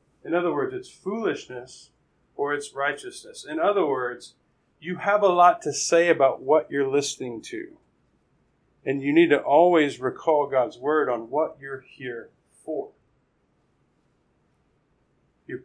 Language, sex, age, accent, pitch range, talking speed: English, male, 50-69, American, 140-205 Hz, 140 wpm